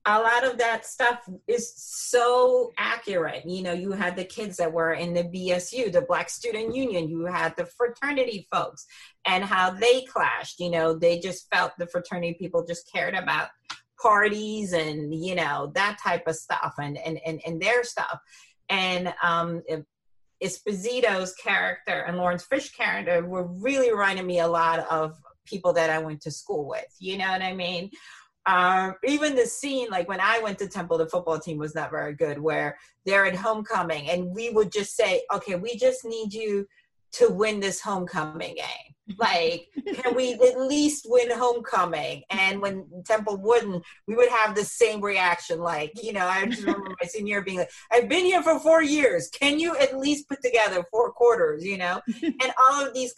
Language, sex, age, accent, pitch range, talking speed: English, female, 30-49, American, 175-240 Hz, 190 wpm